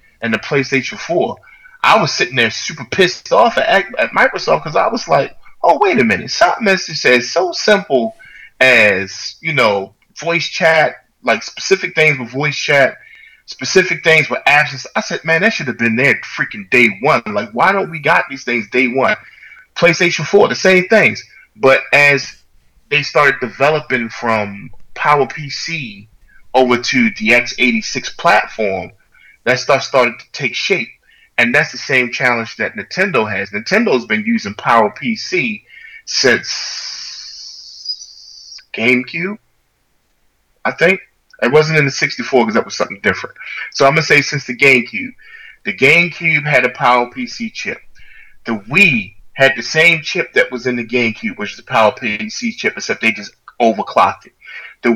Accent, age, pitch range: American, 20-39, 125-195 Hz